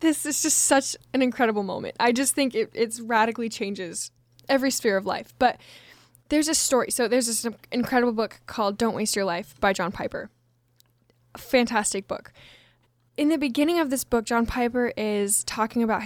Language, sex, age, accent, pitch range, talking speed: English, female, 10-29, American, 210-245 Hz, 185 wpm